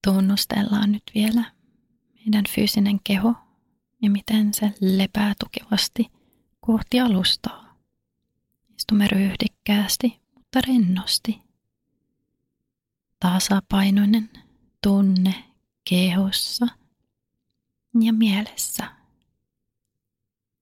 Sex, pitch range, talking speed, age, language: female, 175-225 Hz, 65 wpm, 30-49, Finnish